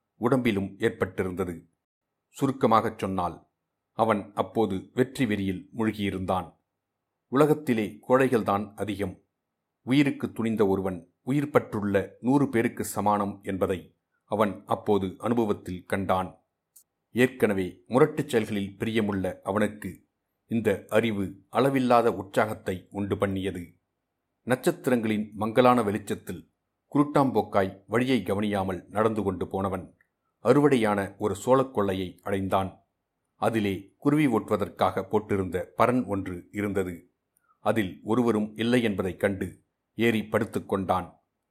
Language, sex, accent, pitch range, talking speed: Tamil, male, native, 95-120 Hz, 90 wpm